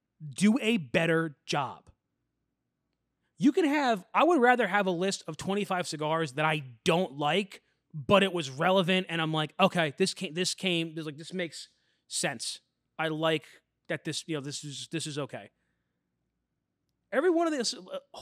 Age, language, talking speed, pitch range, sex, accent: 20-39, English, 175 wpm, 150-190 Hz, male, American